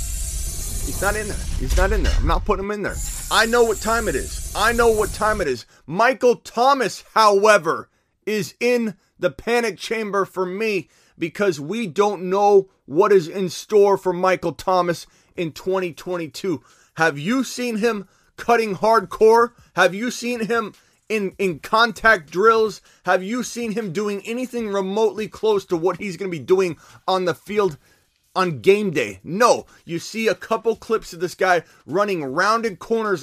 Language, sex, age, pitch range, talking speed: English, male, 30-49, 175-225 Hz, 175 wpm